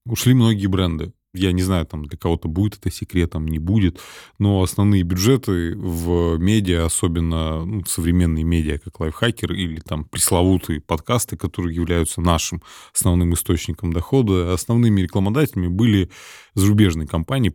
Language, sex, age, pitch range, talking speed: Russian, male, 20-39, 85-110 Hz, 135 wpm